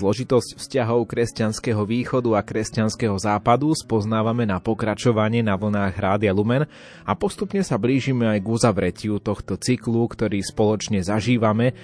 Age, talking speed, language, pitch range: 20-39, 130 wpm, Slovak, 100-120 Hz